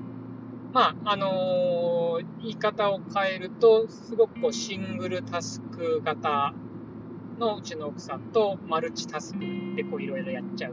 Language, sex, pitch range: Japanese, male, 180-245 Hz